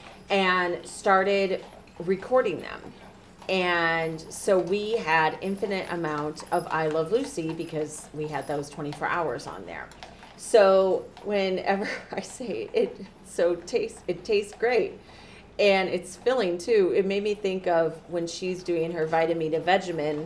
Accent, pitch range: American, 160-205 Hz